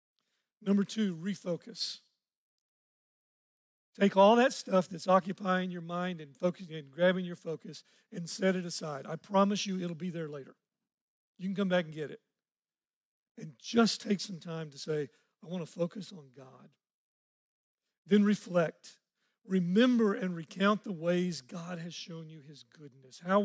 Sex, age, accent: male, 50-69, American